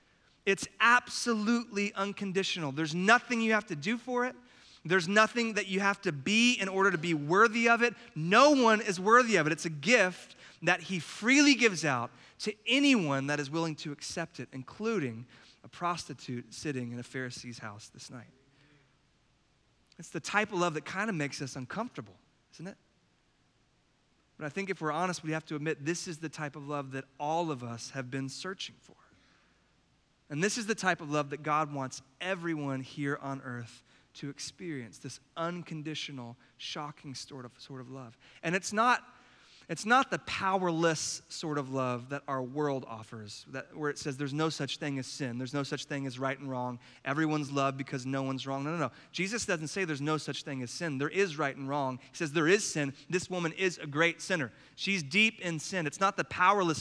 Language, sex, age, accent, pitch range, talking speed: English, male, 30-49, American, 140-190 Hz, 200 wpm